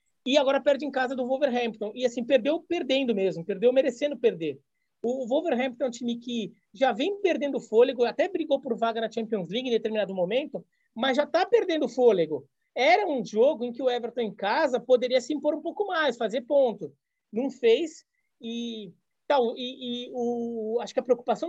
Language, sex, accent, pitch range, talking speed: Portuguese, male, Brazilian, 225-280 Hz, 190 wpm